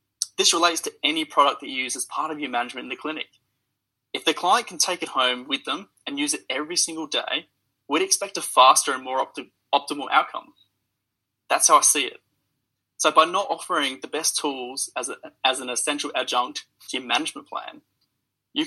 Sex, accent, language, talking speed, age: male, Australian, English, 195 wpm, 20-39